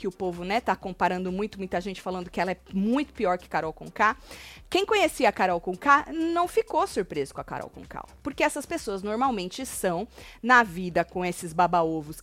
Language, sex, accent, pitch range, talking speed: Portuguese, female, Brazilian, 195-275 Hz, 195 wpm